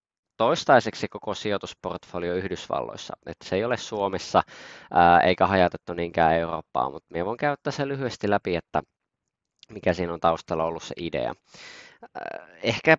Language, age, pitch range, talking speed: Finnish, 20-39, 85-110 Hz, 130 wpm